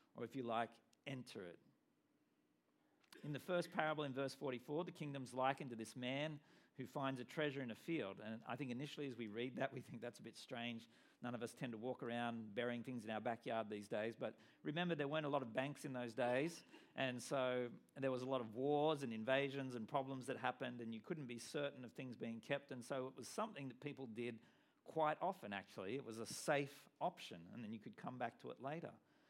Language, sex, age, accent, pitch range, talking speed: English, male, 50-69, Australian, 120-150 Hz, 230 wpm